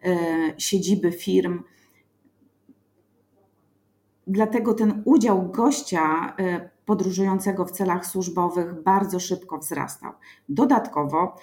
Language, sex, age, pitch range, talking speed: Polish, female, 30-49, 185-245 Hz, 75 wpm